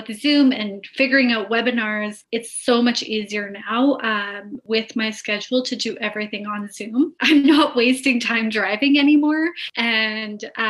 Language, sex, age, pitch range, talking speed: English, female, 20-39, 210-255 Hz, 140 wpm